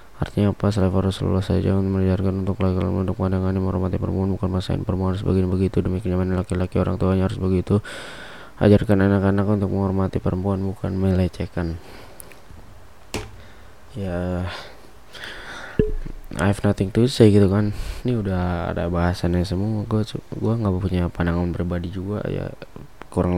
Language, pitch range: English, 90-105 Hz